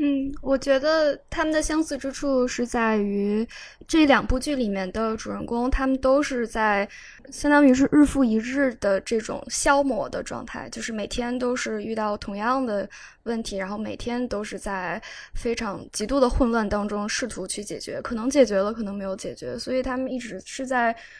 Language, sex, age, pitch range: Chinese, female, 10-29, 210-265 Hz